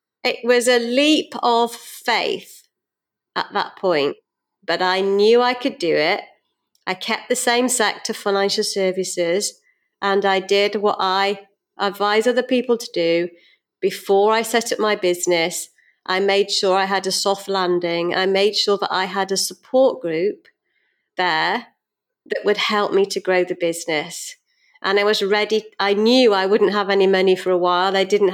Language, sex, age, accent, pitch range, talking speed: Czech, female, 30-49, British, 190-230 Hz, 170 wpm